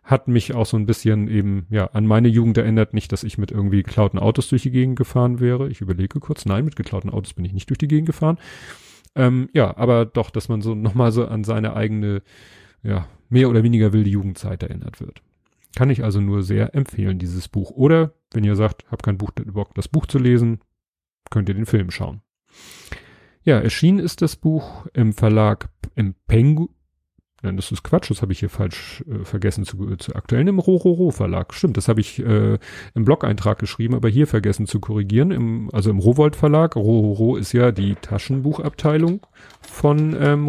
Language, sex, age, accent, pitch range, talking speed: German, male, 40-59, German, 105-135 Hz, 195 wpm